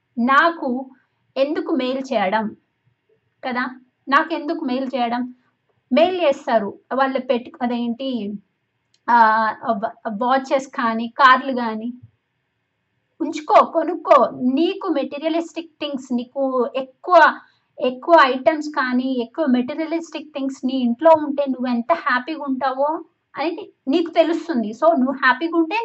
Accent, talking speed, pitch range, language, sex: native, 105 wpm, 245-300 Hz, Telugu, female